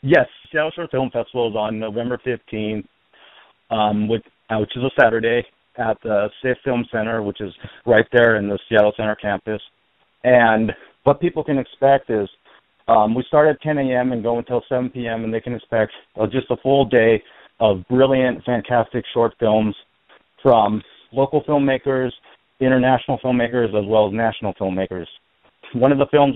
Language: English